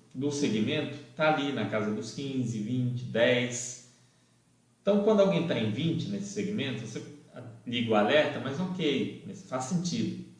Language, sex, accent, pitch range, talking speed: Portuguese, male, Brazilian, 110-150 Hz, 150 wpm